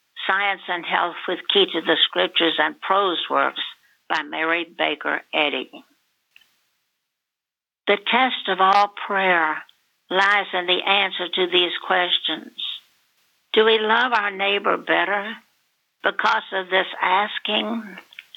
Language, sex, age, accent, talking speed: English, female, 60-79, American, 120 wpm